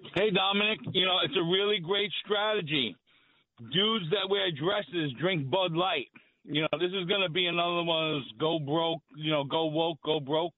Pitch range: 150-195 Hz